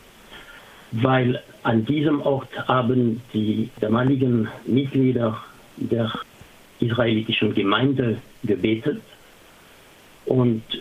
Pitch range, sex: 115-135 Hz, male